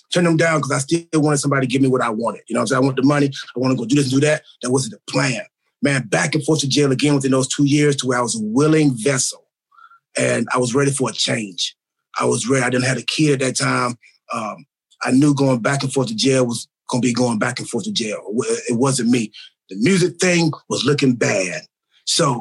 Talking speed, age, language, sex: 270 wpm, 30-49, English, male